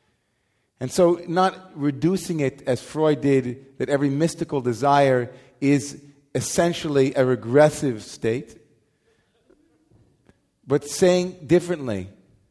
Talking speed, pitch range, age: 95 wpm, 125-150 Hz, 40-59